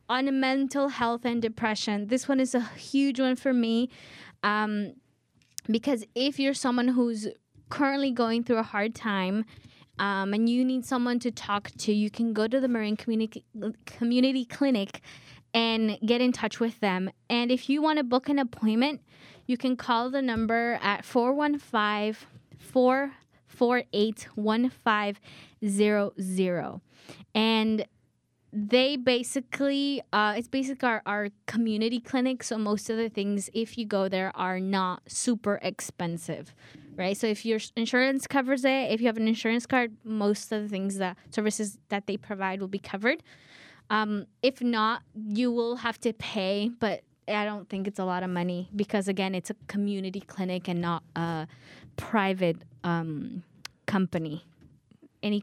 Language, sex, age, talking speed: English, female, 10-29, 150 wpm